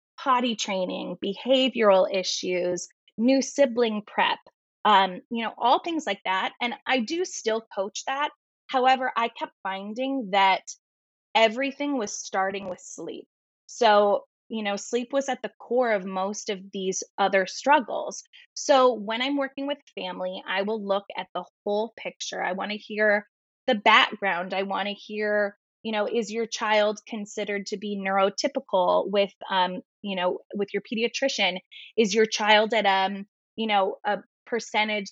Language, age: English, 20-39